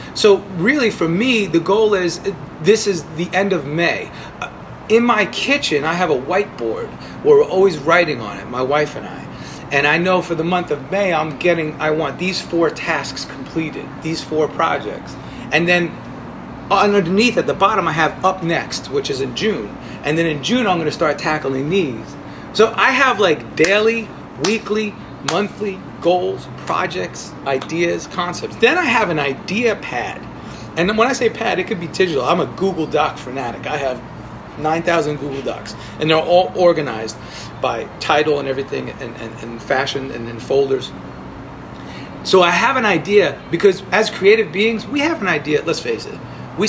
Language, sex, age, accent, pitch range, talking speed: English, male, 30-49, American, 155-205 Hz, 180 wpm